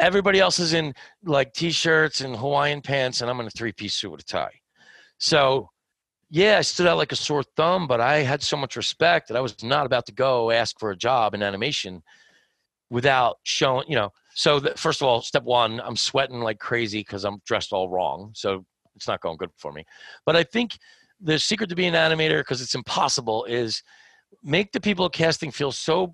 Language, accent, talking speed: English, American, 215 wpm